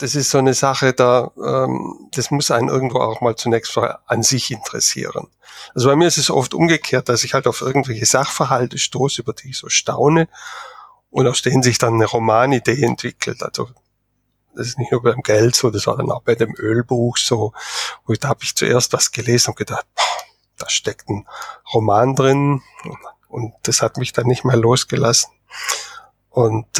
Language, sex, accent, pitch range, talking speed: German, male, German, 115-130 Hz, 190 wpm